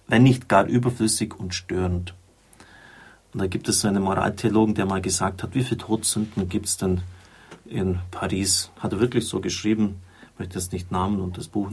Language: German